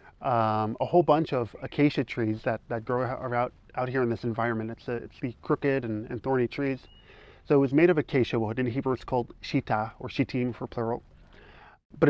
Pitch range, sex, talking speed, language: 120-145 Hz, male, 205 wpm, English